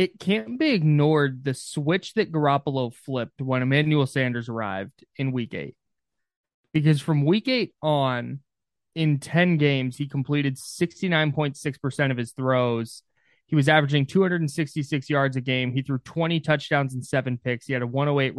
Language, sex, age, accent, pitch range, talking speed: English, male, 20-39, American, 130-155 Hz, 155 wpm